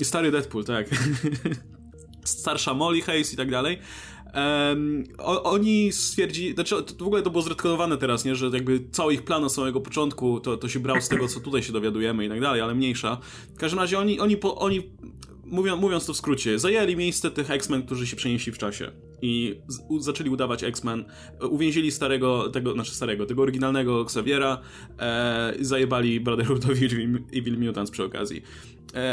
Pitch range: 120-160 Hz